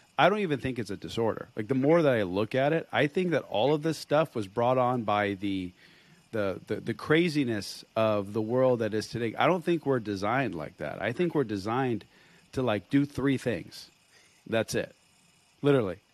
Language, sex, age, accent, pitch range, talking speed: English, male, 40-59, American, 115-165 Hz, 210 wpm